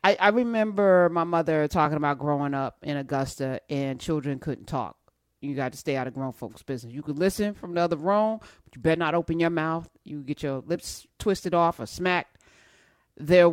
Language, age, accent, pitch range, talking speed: English, 40-59, American, 155-200 Hz, 210 wpm